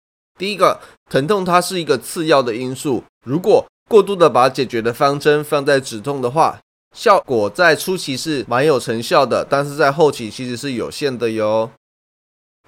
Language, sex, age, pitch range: Chinese, male, 20-39, 120-165 Hz